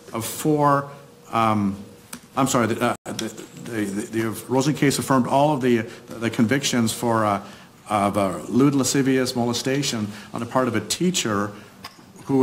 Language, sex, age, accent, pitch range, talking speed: English, male, 50-69, American, 115-135 Hz, 160 wpm